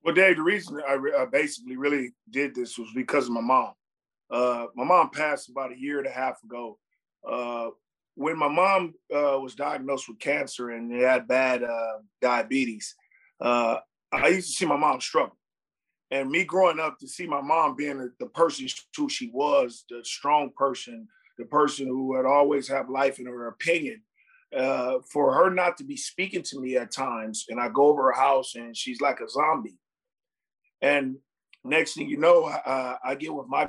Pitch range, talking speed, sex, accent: 130-170 Hz, 195 wpm, male, American